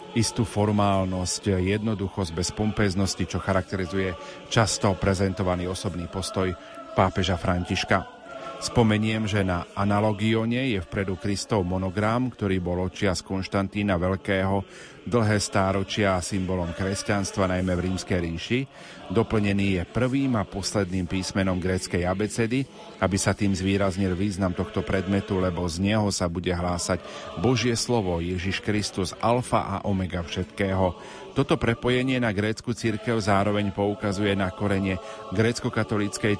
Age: 40-59